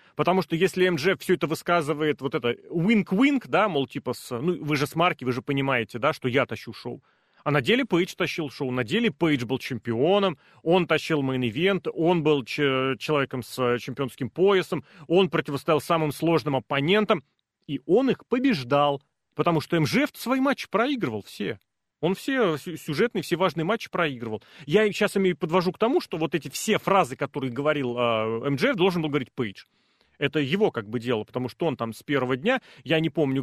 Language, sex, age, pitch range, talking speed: Russian, male, 30-49, 130-190 Hz, 185 wpm